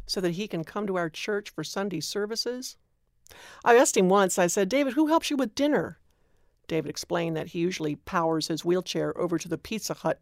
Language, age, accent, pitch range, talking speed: English, 60-79, American, 175-225 Hz, 210 wpm